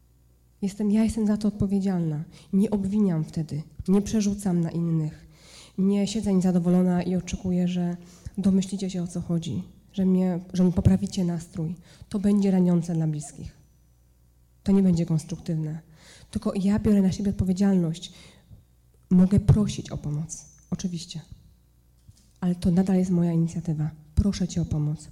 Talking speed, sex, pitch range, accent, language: 140 wpm, female, 160-200 Hz, native, Polish